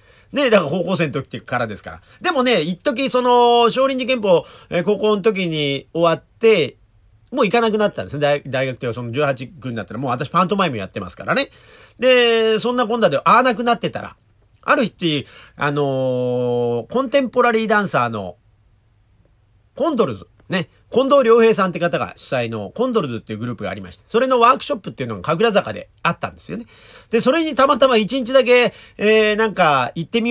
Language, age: Japanese, 40-59